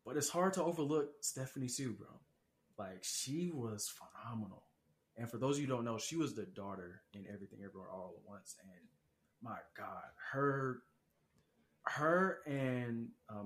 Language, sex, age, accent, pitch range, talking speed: English, male, 20-39, American, 105-130 Hz, 165 wpm